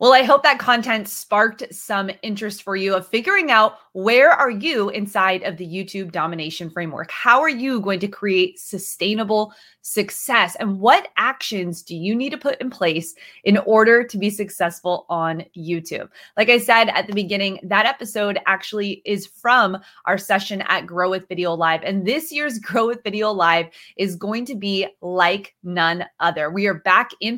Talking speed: 180 wpm